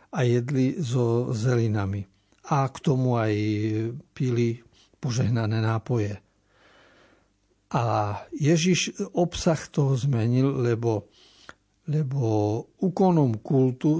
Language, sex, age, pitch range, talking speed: Slovak, male, 60-79, 115-155 Hz, 85 wpm